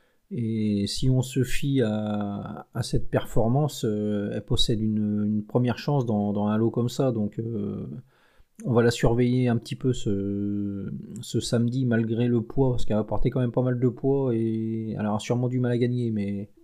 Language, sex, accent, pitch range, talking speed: French, male, French, 110-135 Hz, 200 wpm